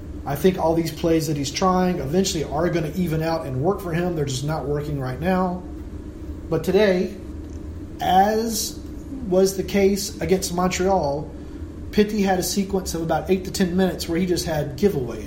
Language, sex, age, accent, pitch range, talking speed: English, male, 30-49, American, 115-180 Hz, 185 wpm